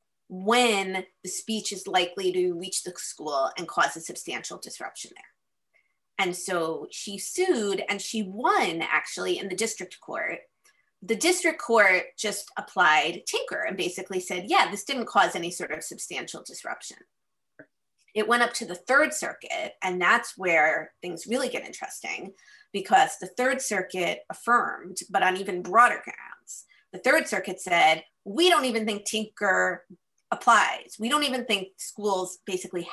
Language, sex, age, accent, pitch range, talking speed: English, female, 30-49, American, 185-225 Hz, 155 wpm